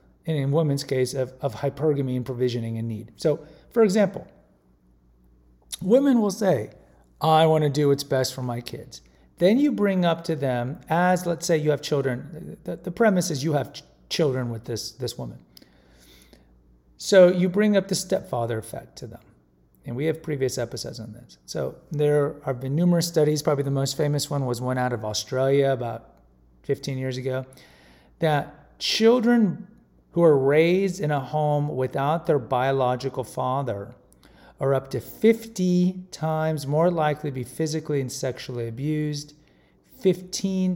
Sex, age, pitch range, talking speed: male, 40-59, 115-160 Hz, 165 wpm